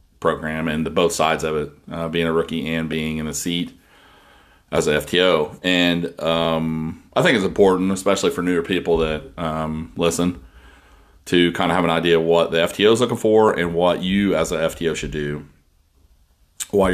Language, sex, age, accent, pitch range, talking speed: English, male, 30-49, American, 80-90 Hz, 190 wpm